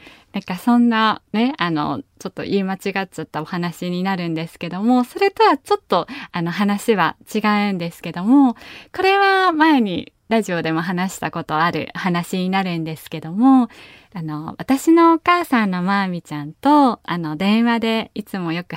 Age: 20-39